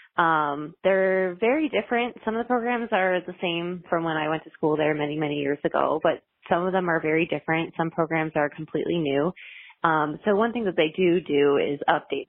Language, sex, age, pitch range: English, female, 20-39, 155-200 Hz